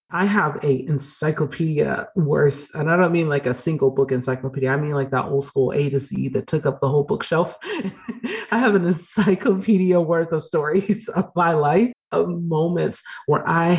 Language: English